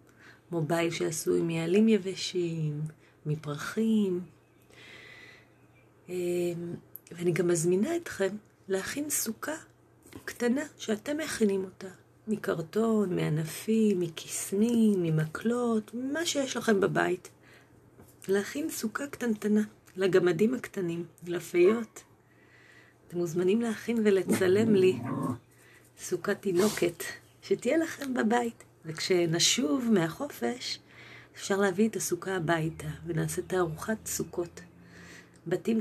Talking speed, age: 85 wpm, 30-49